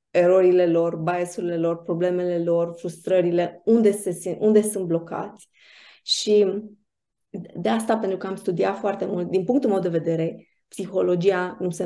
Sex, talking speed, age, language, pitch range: female, 145 wpm, 20-39, Romanian, 170-200 Hz